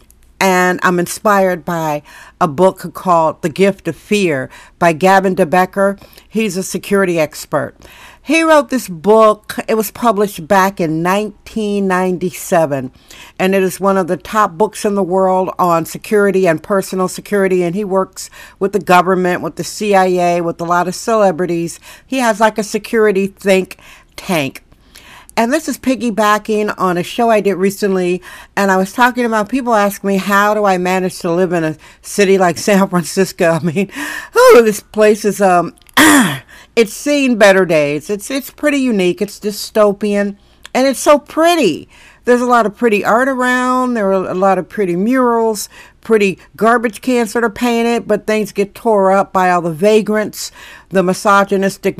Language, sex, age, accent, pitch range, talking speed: English, female, 60-79, American, 180-220 Hz, 170 wpm